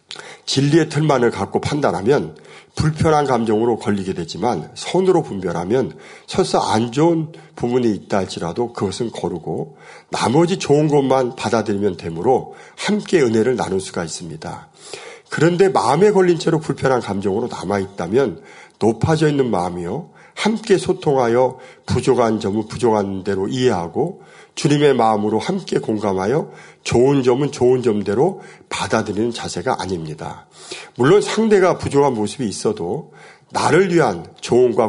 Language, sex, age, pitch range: Korean, male, 50-69, 105-160 Hz